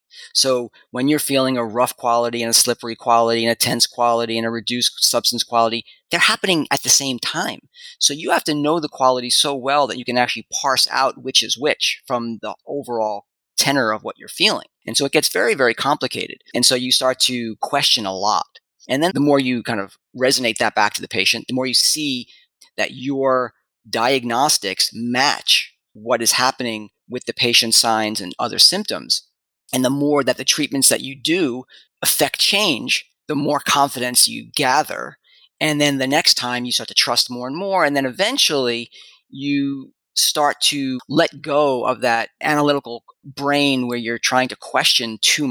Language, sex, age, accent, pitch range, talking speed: English, male, 30-49, American, 120-140 Hz, 190 wpm